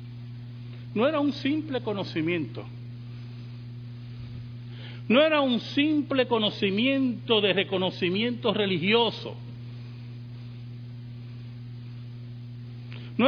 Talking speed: 65 wpm